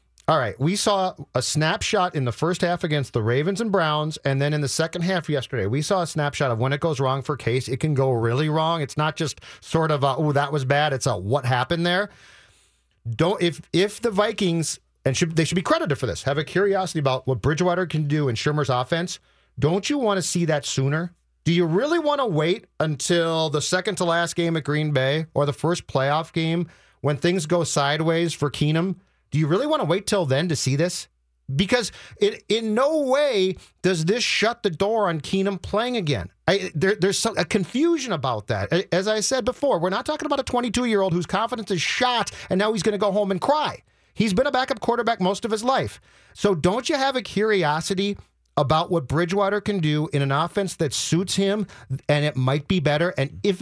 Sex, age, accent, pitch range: male, 40-59, American, 145-200 Hz